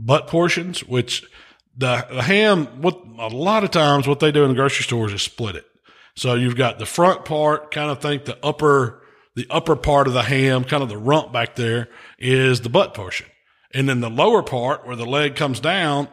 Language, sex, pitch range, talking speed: English, male, 115-140 Hz, 210 wpm